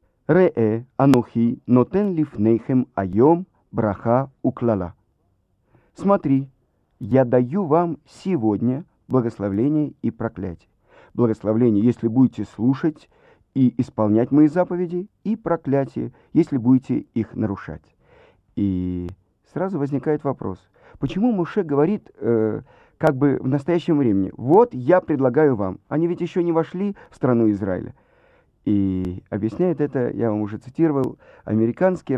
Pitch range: 110-150 Hz